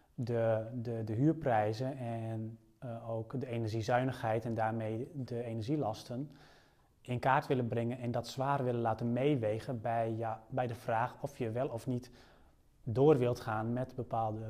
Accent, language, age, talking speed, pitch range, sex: Dutch, Dutch, 30-49, 155 wpm, 115-135 Hz, male